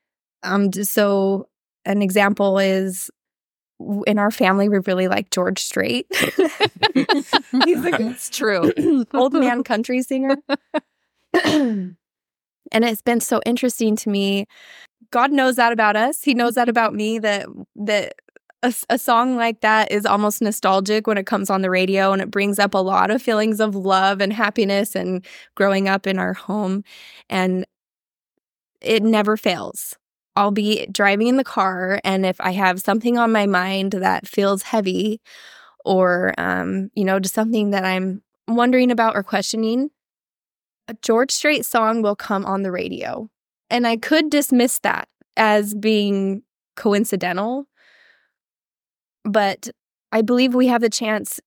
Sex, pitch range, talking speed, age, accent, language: female, 195-240 Hz, 150 wpm, 20-39, American, English